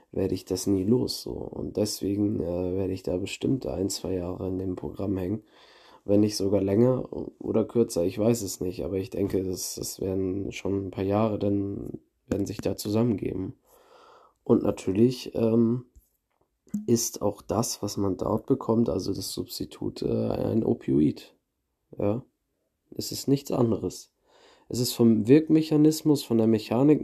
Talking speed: 160 wpm